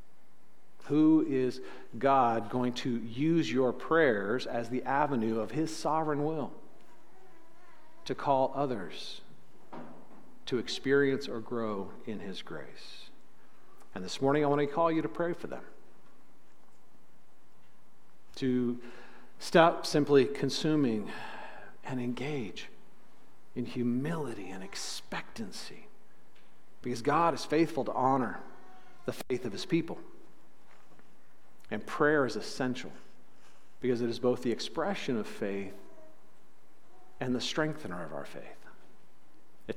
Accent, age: American, 50-69